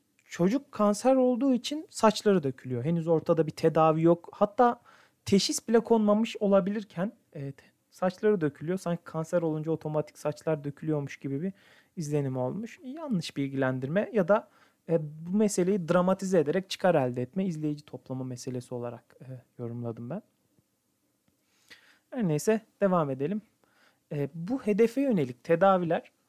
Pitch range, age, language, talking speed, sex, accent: 150-215 Hz, 40-59, Turkish, 130 wpm, male, native